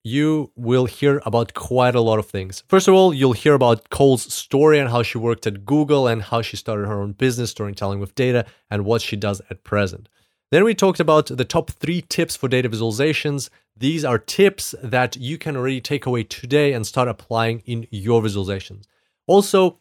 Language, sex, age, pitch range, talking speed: English, male, 30-49, 110-135 Hz, 205 wpm